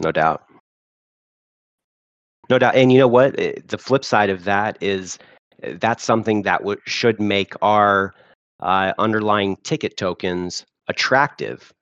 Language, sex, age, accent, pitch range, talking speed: English, male, 30-49, American, 85-105 Hz, 125 wpm